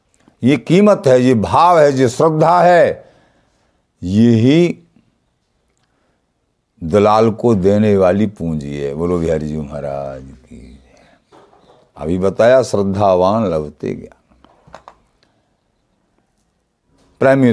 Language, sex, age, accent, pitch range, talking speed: Hindi, male, 50-69, native, 100-140 Hz, 95 wpm